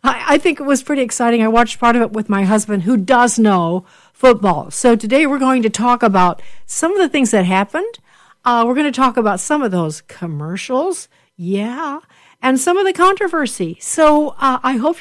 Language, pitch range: English, 205-260 Hz